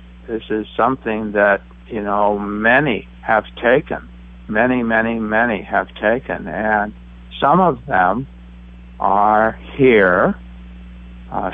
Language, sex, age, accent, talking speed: English, male, 60-79, American, 110 wpm